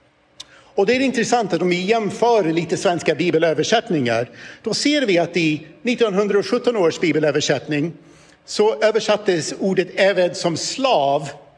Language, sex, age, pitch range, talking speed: Swedish, male, 60-79, 160-210 Hz, 130 wpm